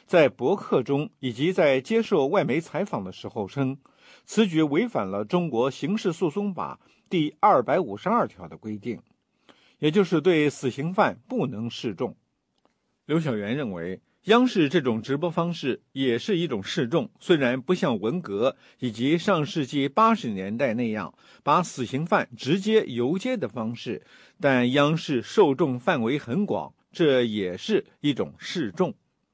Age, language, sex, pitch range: 50-69, English, male, 130-200 Hz